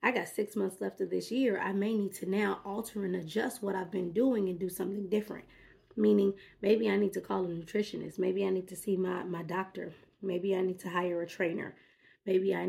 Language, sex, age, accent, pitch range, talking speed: English, female, 20-39, American, 185-220 Hz, 230 wpm